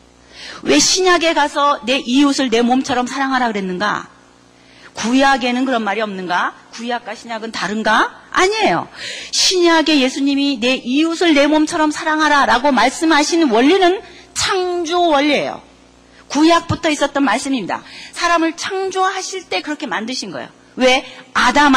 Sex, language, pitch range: female, Korean, 205-305 Hz